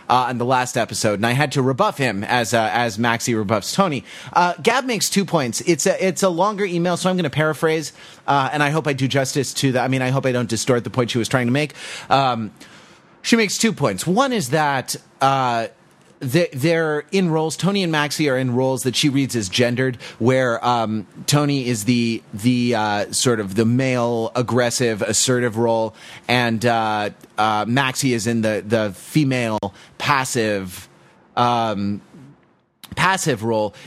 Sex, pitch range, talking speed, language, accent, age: male, 115-160 Hz, 190 wpm, English, American, 30-49